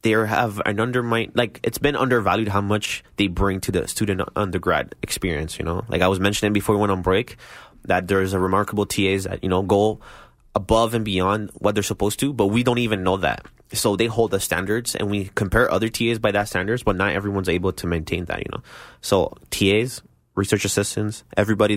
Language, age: English, 20-39